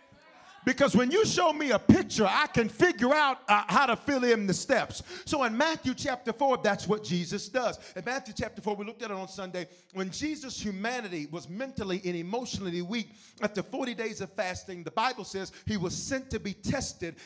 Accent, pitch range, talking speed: American, 190-255 Hz, 205 wpm